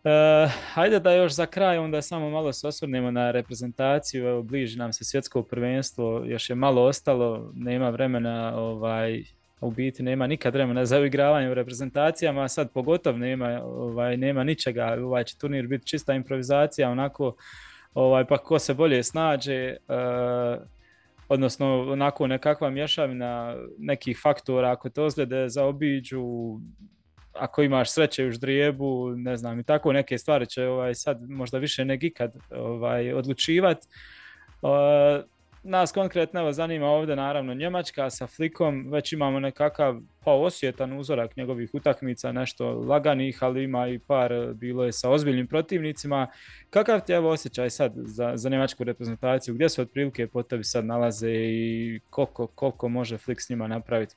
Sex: male